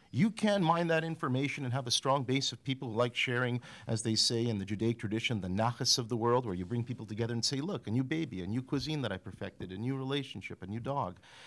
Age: 50-69